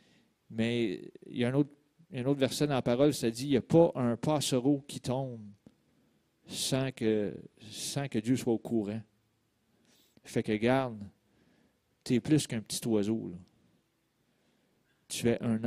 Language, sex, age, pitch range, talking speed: French, male, 40-59, 110-140 Hz, 170 wpm